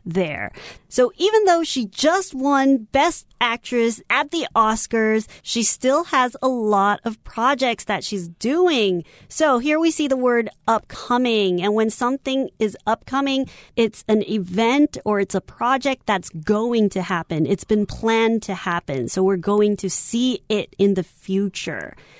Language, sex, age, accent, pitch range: Chinese, female, 30-49, American, 200-250 Hz